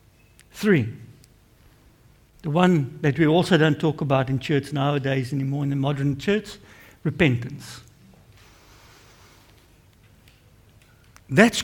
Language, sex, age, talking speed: English, male, 60-79, 100 wpm